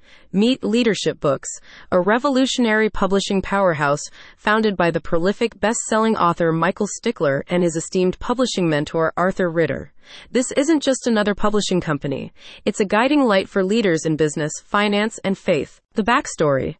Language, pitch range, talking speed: English, 170-225 Hz, 145 wpm